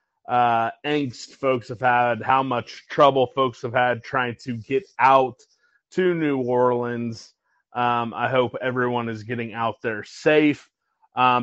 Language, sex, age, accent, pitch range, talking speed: English, male, 30-49, American, 125-140 Hz, 145 wpm